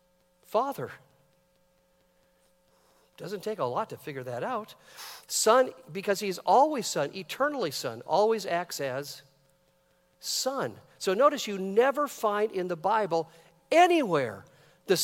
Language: English